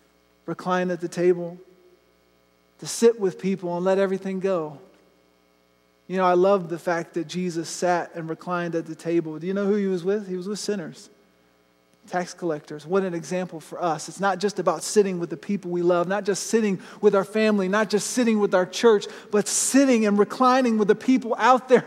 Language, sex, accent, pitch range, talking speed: English, male, American, 165-210 Hz, 205 wpm